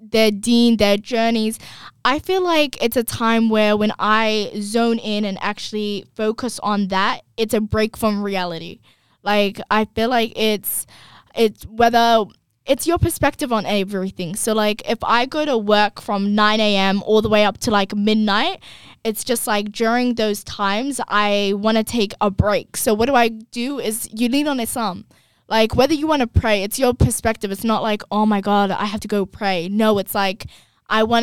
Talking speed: 190 wpm